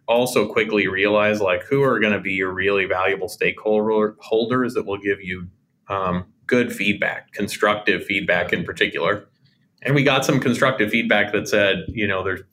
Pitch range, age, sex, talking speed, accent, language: 95-110 Hz, 30-49, male, 170 wpm, American, English